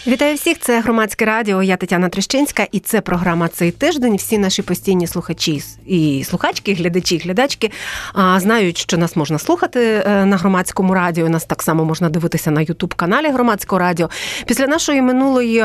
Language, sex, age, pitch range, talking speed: Ukrainian, female, 30-49, 195-255 Hz, 175 wpm